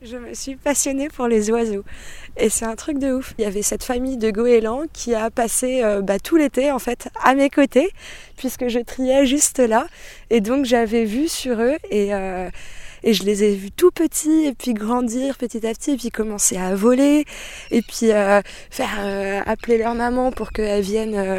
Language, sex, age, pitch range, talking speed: French, female, 20-39, 205-265 Hz, 210 wpm